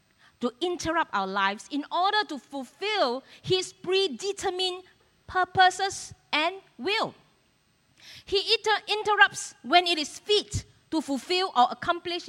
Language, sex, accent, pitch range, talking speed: English, female, Malaysian, 265-395 Hz, 110 wpm